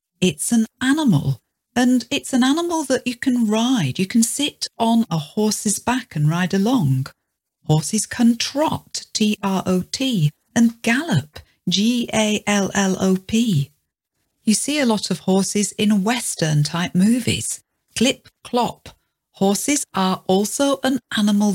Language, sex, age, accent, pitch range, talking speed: English, female, 50-69, British, 185-235 Hz, 120 wpm